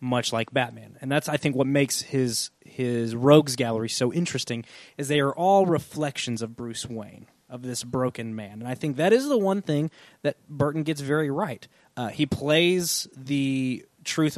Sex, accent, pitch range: male, American, 115-145 Hz